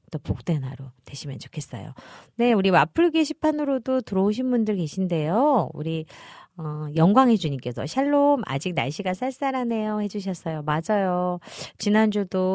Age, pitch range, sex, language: 40-59, 140-210 Hz, female, Korean